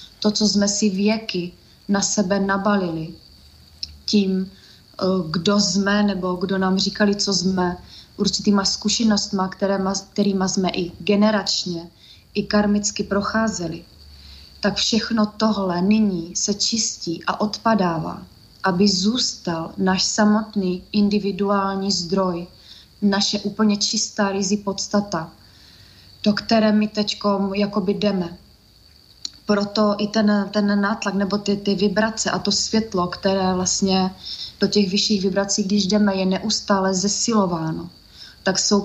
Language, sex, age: Slovak, female, 20-39